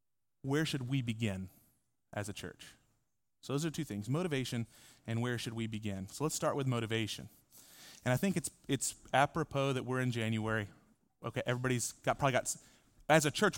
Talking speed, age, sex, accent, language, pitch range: 180 wpm, 30-49, male, American, English, 125-175 Hz